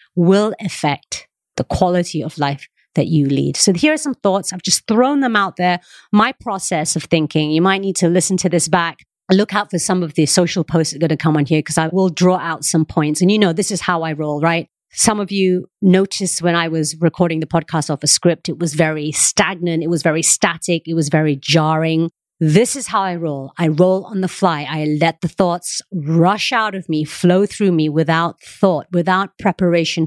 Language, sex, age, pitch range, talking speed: English, female, 30-49, 160-190 Hz, 225 wpm